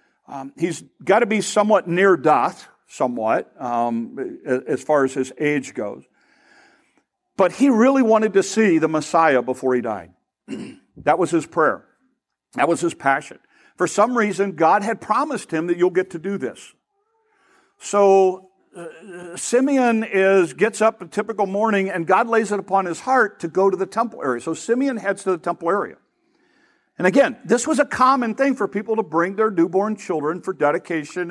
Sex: male